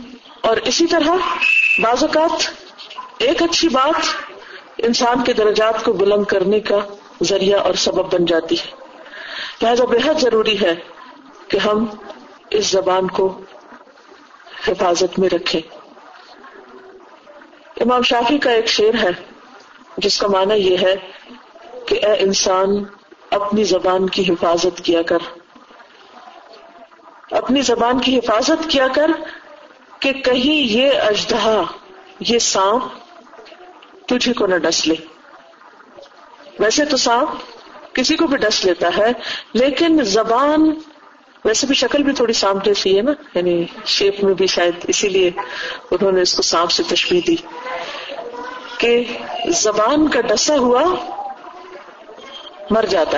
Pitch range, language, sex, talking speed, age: 200-310 Hz, Urdu, female, 125 wpm, 50-69